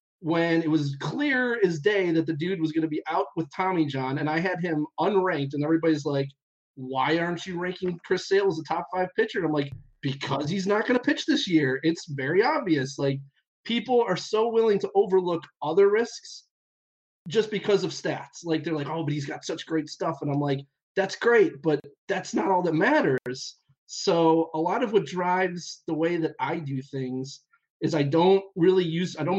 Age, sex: 30-49, male